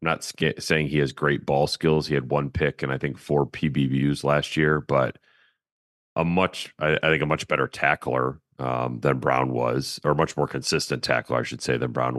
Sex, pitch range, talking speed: male, 70-95 Hz, 210 wpm